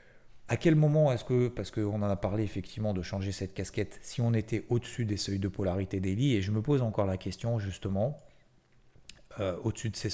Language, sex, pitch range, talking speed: French, male, 95-115 Hz, 215 wpm